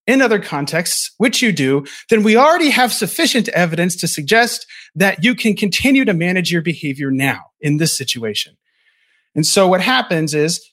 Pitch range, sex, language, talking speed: 160-220 Hz, male, English, 175 wpm